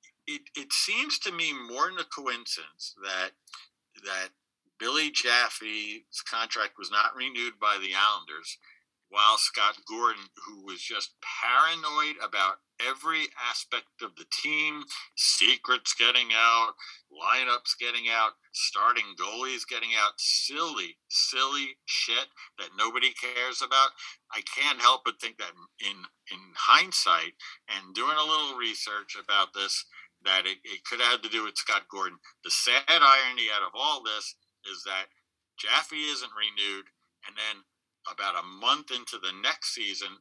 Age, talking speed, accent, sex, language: 50-69, 145 wpm, American, male, English